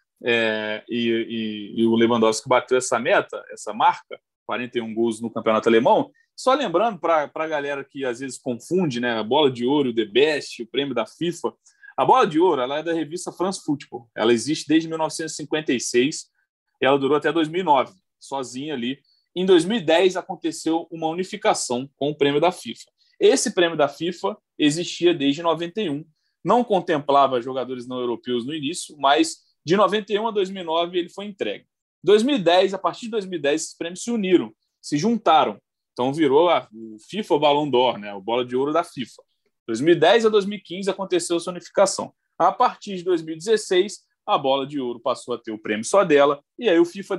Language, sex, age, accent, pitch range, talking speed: Portuguese, male, 20-39, Brazilian, 130-190 Hz, 180 wpm